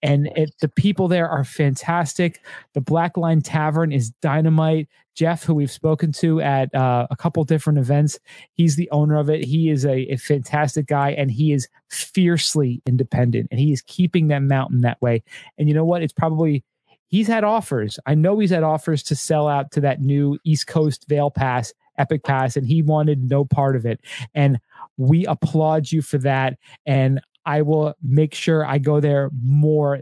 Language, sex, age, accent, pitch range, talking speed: English, male, 30-49, American, 135-155 Hz, 190 wpm